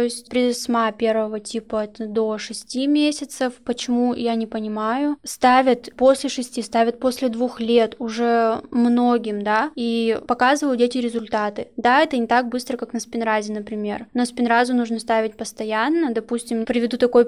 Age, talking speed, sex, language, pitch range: 10-29, 155 wpm, female, Russian, 230-255 Hz